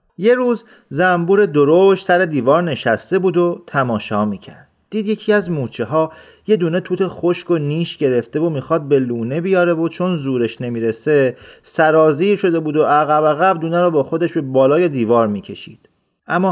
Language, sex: Persian, male